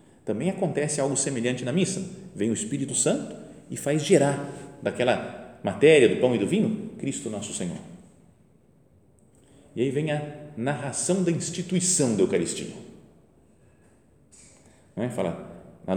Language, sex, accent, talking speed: Portuguese, male, Brazilian, 130 wpm